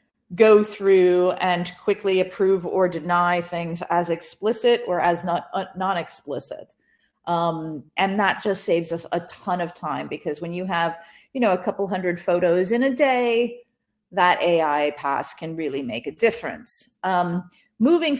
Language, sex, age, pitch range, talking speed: English, female, 40-59, 165-200 Hz, 160 wpm